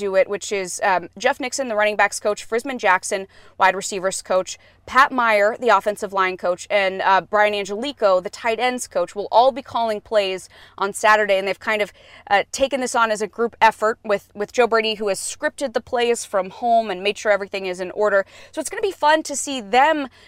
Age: 20-39